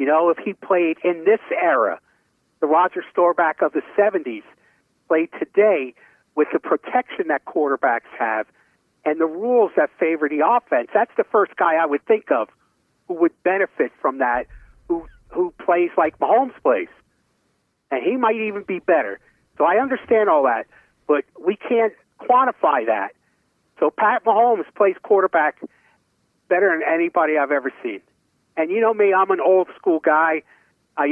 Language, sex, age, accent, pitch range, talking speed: English, male, 50-69, American, 150-225 Hz, 160 wpm